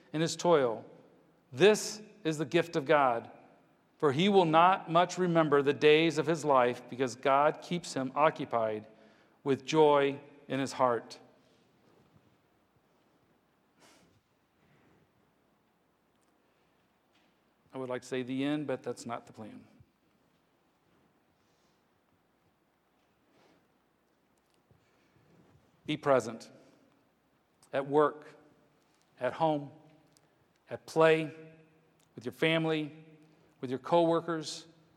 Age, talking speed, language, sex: 50-69, 95 wpm, English, male